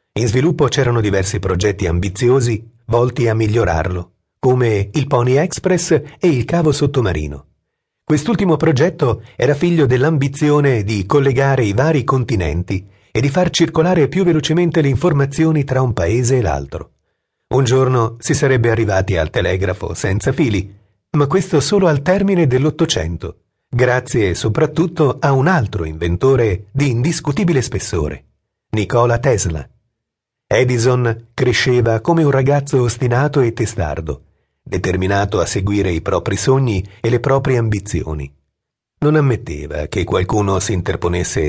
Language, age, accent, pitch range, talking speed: Italian, 40-59, native, 95-140 Hz, 130 wpm